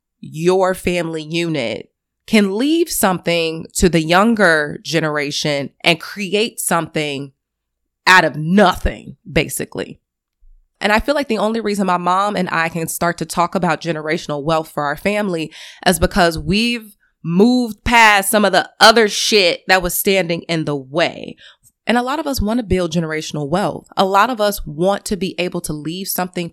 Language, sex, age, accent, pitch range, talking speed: English, female, 20-39, American, 165-210 Hz, 170 wpm